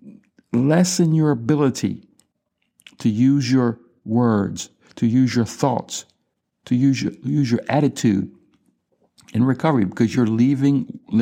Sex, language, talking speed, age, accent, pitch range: male, English, 110 wpm, 60-79, American, 110-145 Hz